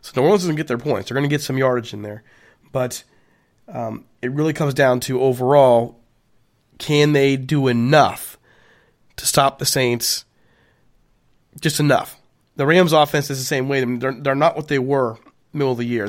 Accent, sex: American, male